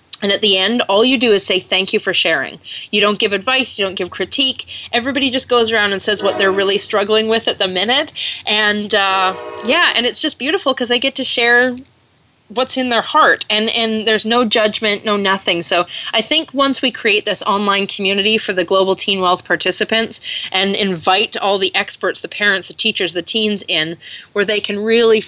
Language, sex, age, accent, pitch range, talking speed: English, female, 20-39, American, 190-235 Hz, 210 wpm